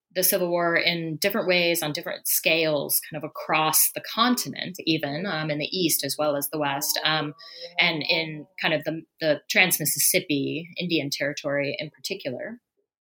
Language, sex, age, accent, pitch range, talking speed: English, female, 30-49, American, 155-195 Hz, 170 wpm